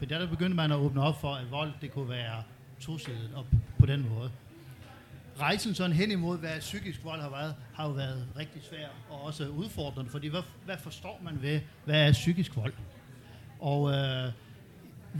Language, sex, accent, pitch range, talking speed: Danish, male, native, 130-170 Hz, 185 wpm